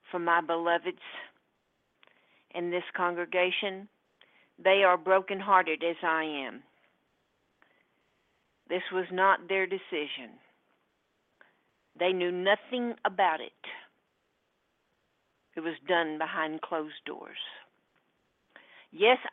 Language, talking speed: English, 90 wpm